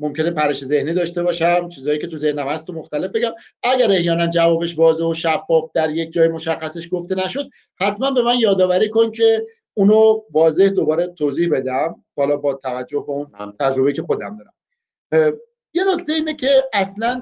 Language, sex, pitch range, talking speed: Persian, male, 150-210 Hz, 170 wpm